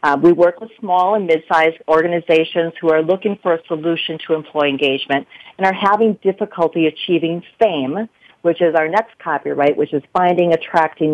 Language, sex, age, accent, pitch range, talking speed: English, female, 50-69, American, 155-190 Hz, 170 wpm